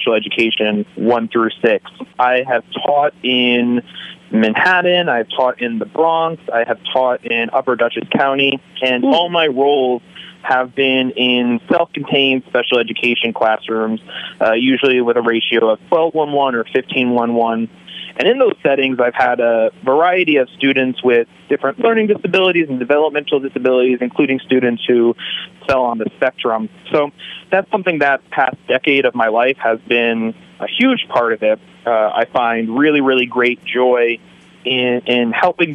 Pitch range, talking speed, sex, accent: 115-145 Hz, 155 wpm, male, American